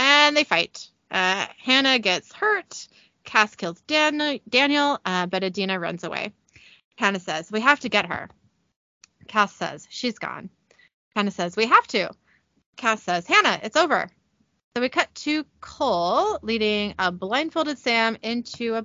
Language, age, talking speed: English, 30-49, 150 wpm